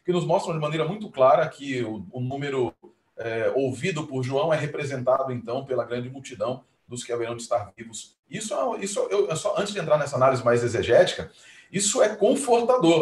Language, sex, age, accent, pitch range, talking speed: Portuguese, male, 40-59, Brazilian, 120-160 Hz, 190 wpm